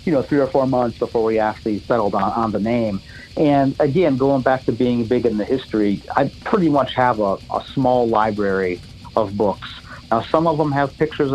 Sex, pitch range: male, 110-135 Hz